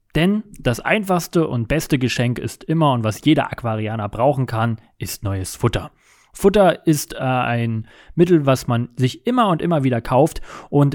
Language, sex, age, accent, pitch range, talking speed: German, male, 30-49, German, 120-155 Hz, 170 wpm